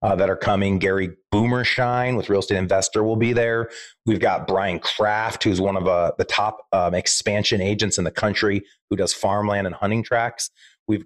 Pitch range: 95-115 Hz